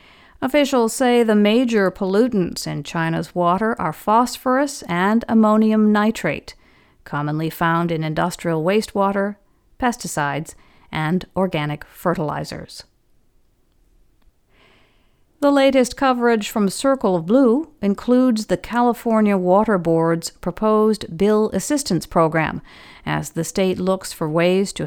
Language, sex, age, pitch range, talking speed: English, female, 50-69, 170-230 Hz, 110 wpm